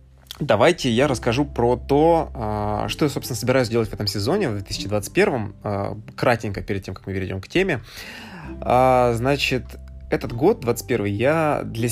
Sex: male